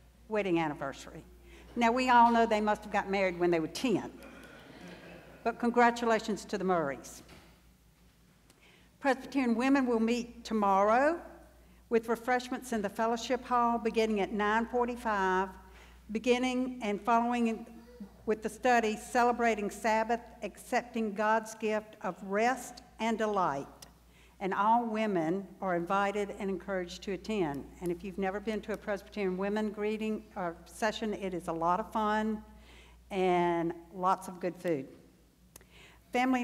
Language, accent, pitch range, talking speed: English, American, 195-240 Hz, 135 wpm